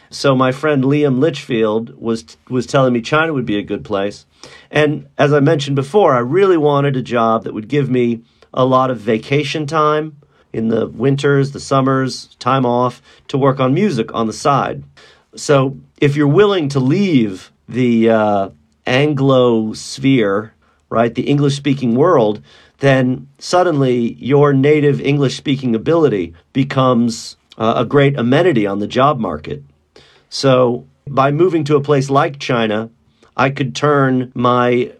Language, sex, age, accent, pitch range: Chinese, male, 40-59, American, 120-150 Hz